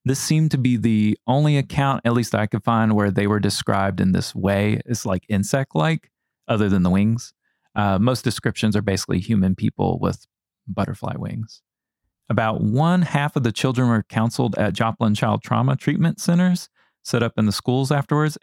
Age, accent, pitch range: 30-49, American, 105-135 Hz